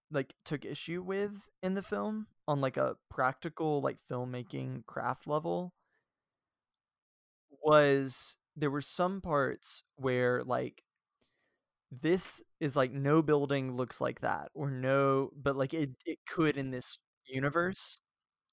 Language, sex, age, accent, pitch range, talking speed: English, male, 20-39, American, 130-155 Hz, 130 wpm